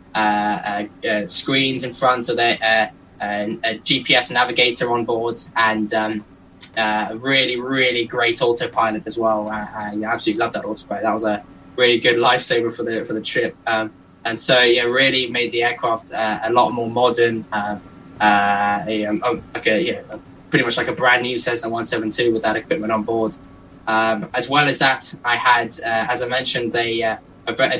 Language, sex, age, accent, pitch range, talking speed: English, male, 10-29, British, 110-125 Hz, 190 wpm